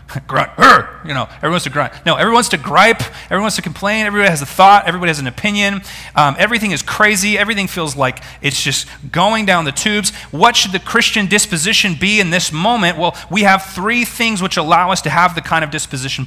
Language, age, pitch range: English, 30-49, 105-175 Hz